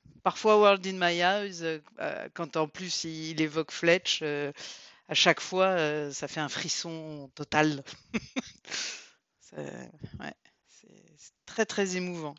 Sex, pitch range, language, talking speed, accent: female, 145-180 Hz, French, 160 wpm, French